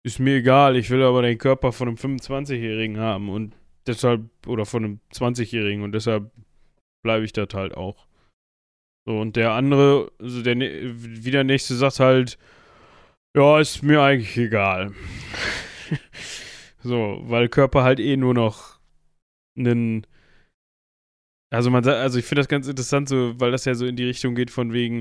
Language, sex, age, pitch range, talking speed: German, male, 10-29, 115-140 Hz, 165 wpm